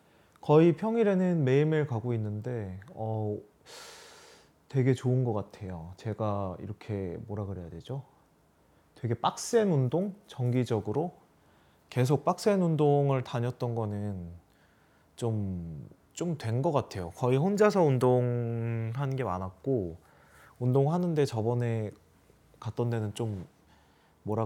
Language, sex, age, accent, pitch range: Korean, male, 20-39, native, 100-135 Hz